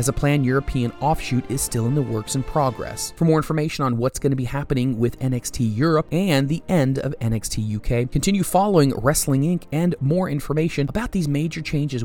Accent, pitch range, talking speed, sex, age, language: American, 115-150 Hz, 200 wpm, male, 30-49, English